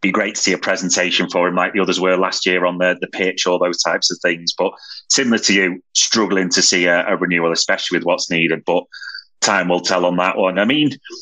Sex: male